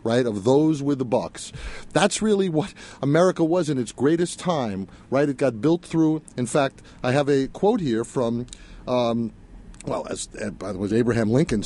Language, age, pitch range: English, 50-69, 110-155 Hz